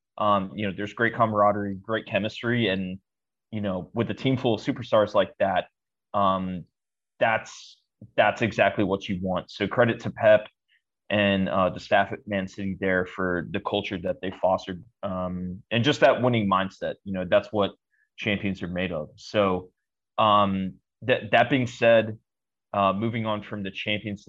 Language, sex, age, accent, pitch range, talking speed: English, male, 20-39, American, 95-115 Hz, 175 wpm